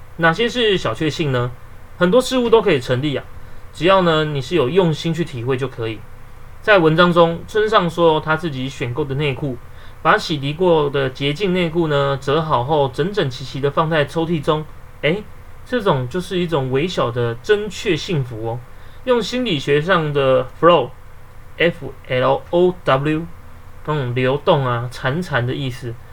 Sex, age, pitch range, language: male, 30-49, 125-175 Hz, Chinese